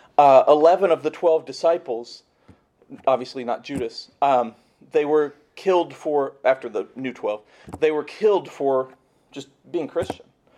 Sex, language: male, English